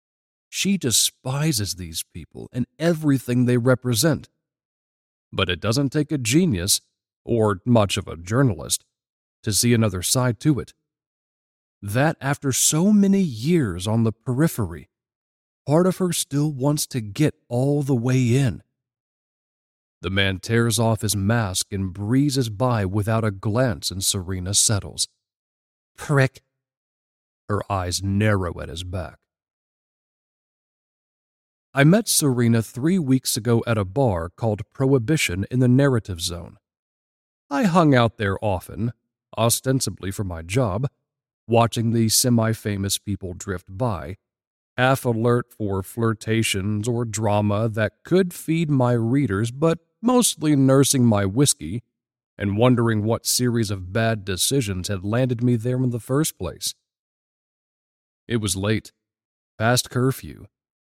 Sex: male